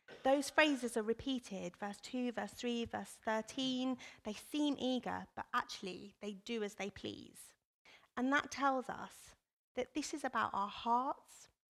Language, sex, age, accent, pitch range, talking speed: English, female, 30-49, British, 205-250 Hz, 155 wpm